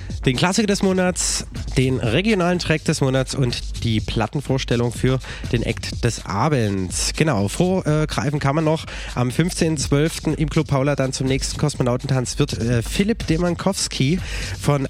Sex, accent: male, German